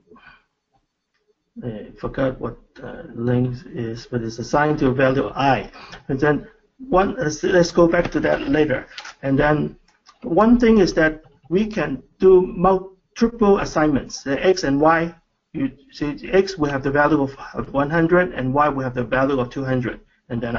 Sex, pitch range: male, 135-185 Hz